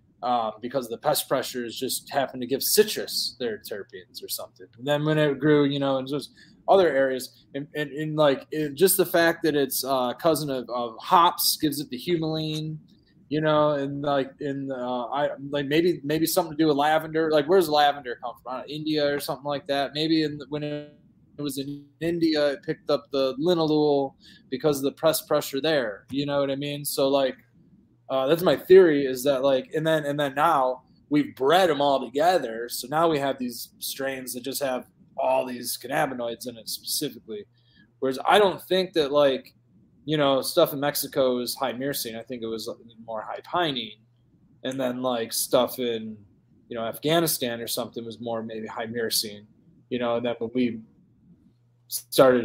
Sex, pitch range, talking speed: male, 125-150 Hz, 195 wpm